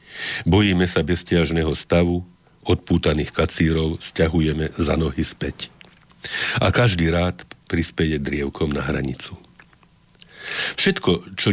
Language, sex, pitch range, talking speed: Slovak, male, 75-90 Hz, 100 wpm